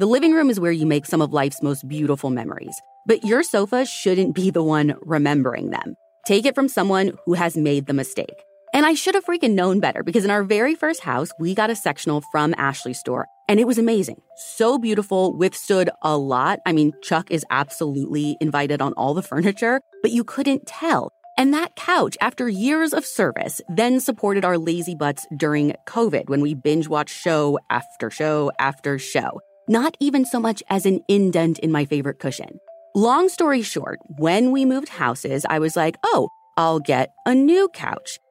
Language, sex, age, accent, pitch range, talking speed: English, female, 30-49, American, 155-250 Hz, 195 wpm